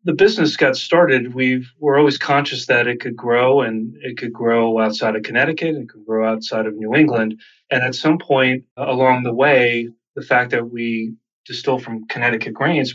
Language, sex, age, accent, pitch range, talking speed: English, male, 30-49, American, 110-125 Hz, 195 wpm